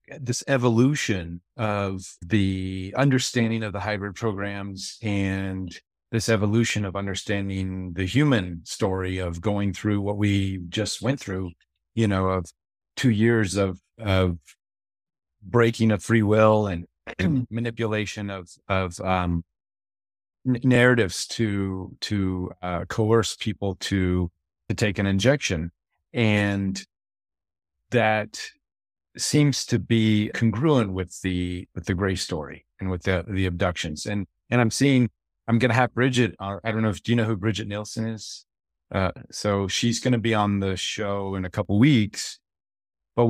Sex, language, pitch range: male, English, 90-115 Hz